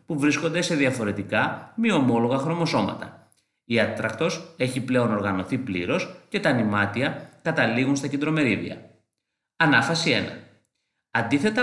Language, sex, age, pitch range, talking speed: Greek, male, 30-49, 110-170 Hz, 115 wpm